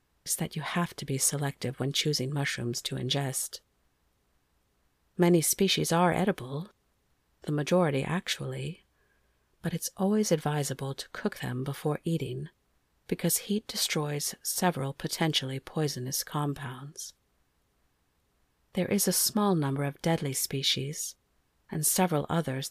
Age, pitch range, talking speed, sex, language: 50-69, 135-175 Hz, 120 wpm, female, English